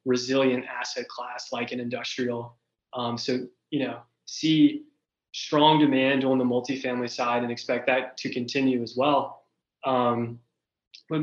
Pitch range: 125-135 Hz